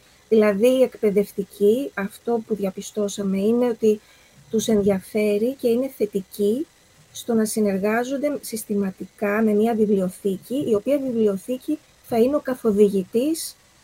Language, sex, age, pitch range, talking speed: Greek, female, 30-49, 205-260 Hz, 115 wpm